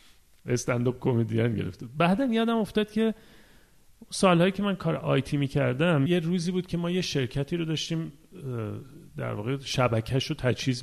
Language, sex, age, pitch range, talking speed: Persian, male, 40-59, 130-175 Hz, 155 wpm